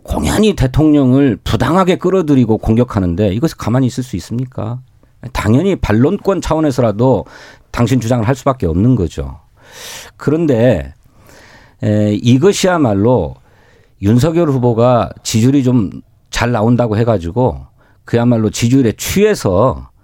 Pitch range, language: 100-140 Hz, Korean